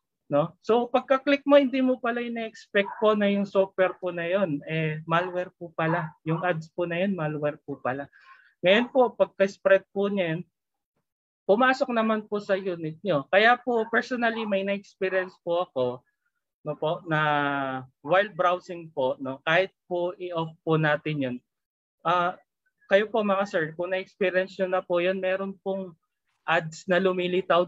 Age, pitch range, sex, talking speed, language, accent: 20-39, 155-205 Hz, male, 165 wpm, Filipino, native